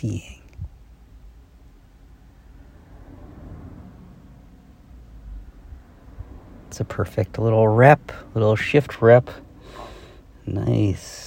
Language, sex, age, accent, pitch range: English, male, 50-69, American, 90-110 Hz